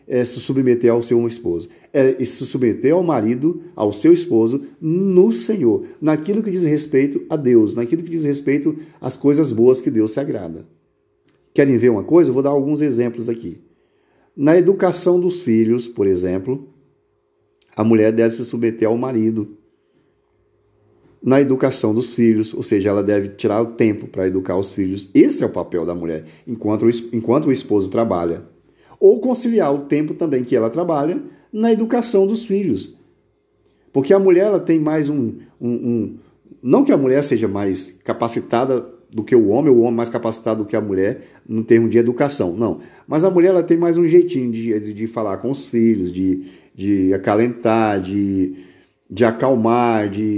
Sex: male